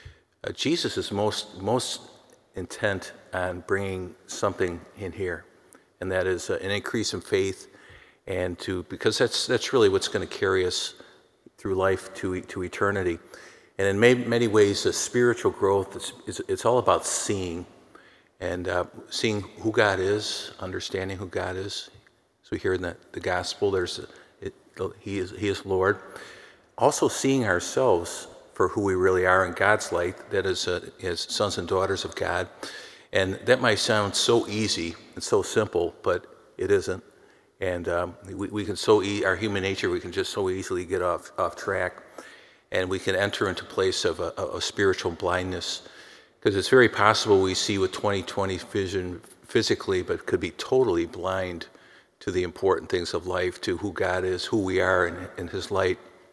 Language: English